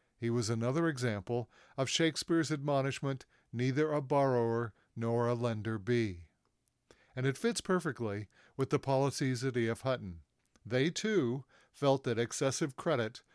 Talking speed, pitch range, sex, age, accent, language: 135 wpm, 115-140 Hz, male, 50-69, American, English